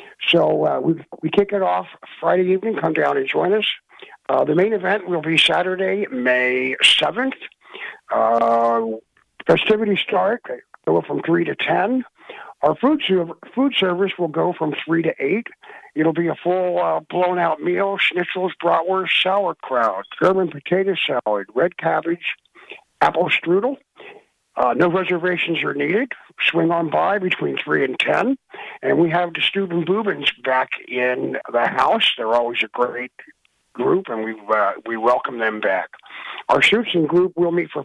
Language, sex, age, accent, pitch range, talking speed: English, male, 60-79, American, 125-195 Hz, 160 wpm